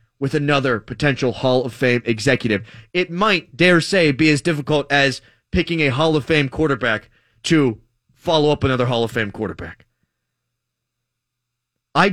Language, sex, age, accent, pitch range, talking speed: English, male, 30-49, American, 120-175 Hz, 150 wpm